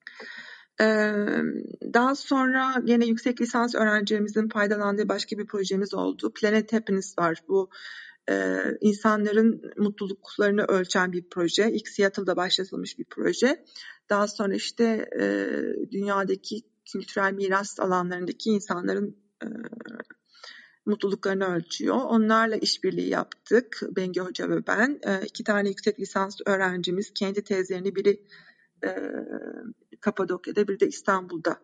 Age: 40-59